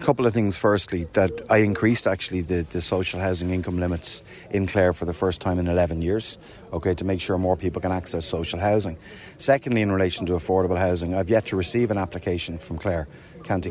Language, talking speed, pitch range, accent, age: English, 215 wpm, 90-105 Hz, Irish, 30-49